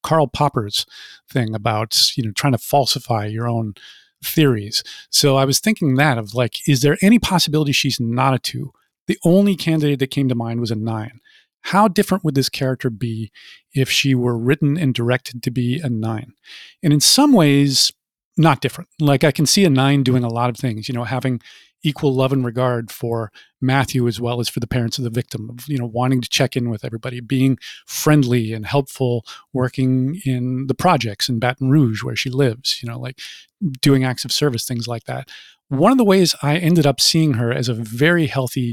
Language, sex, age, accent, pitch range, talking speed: English, male, 40-59, American, 120-150 Hz, 210 wpm